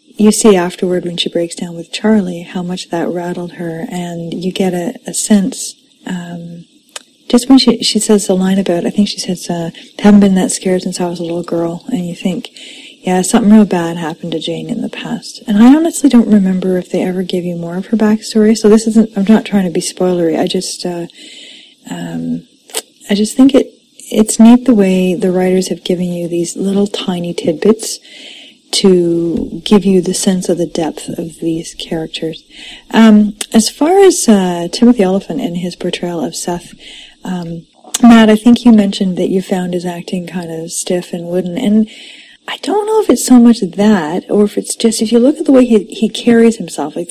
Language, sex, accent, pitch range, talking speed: English, female, American, 180-235 Hz, 210 wpm